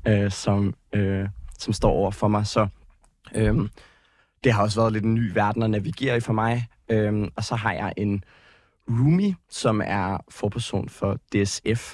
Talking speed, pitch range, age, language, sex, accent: 175 wpm, 100-115 Hz, 20-39, Danish, male, native